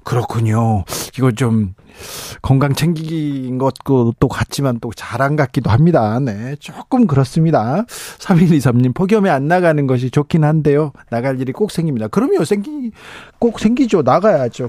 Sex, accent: male, native